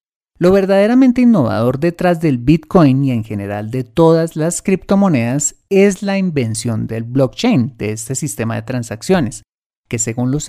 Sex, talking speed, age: male, 150 wpm, 30-49